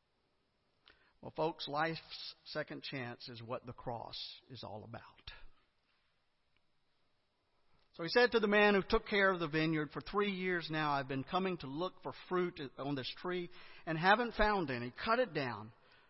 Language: English